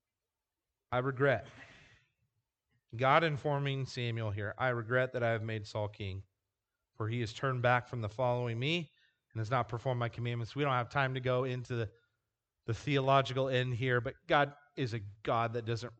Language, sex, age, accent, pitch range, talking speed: English, male, 30-49, American, 115-145 Hz, 180 wpm